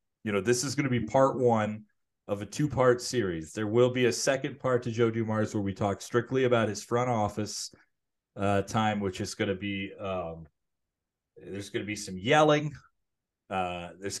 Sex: male